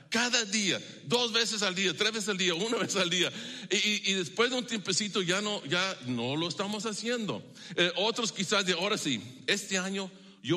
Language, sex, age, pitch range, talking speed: English, male, 50-69, 155-205 Hz, 210 wpm